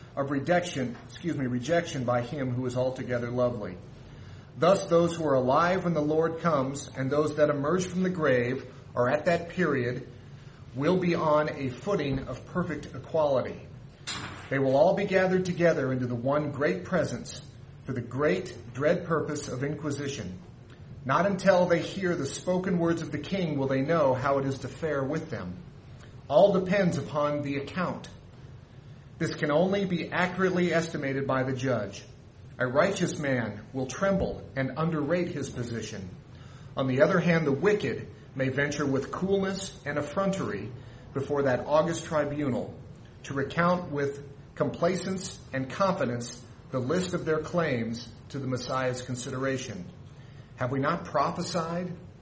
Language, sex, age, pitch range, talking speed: English, male, 40-59, 125-165 Hz, 155 wpm